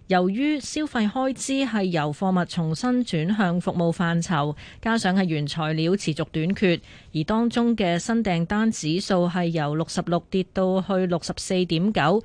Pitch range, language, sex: 170-220 Hz, Chinese, female